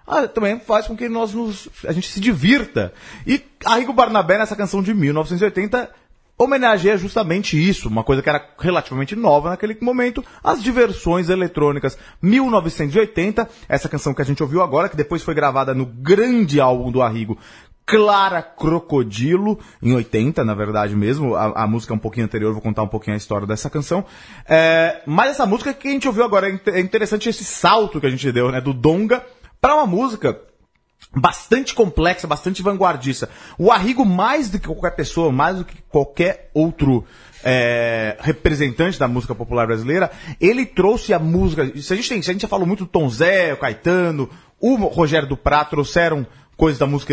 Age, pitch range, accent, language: 30-49, 130-205 Hz, Brazilian, Portuguese